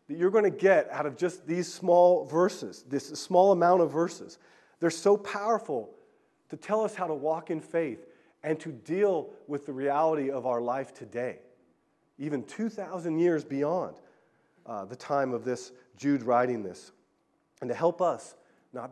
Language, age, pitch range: English, 40-59, 145-215 Hz